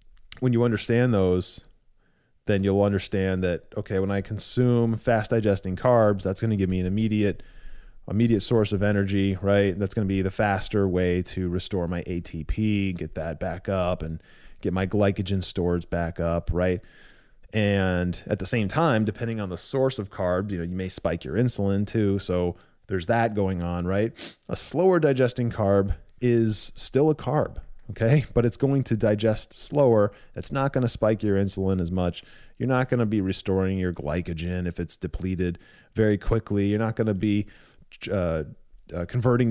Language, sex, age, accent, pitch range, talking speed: English, male, 20-39, American, 90-115 Hz, 180 wpm